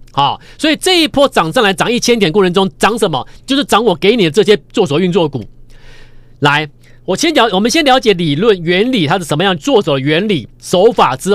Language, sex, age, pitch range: Chinese, male, 40-59, 155-235 Hz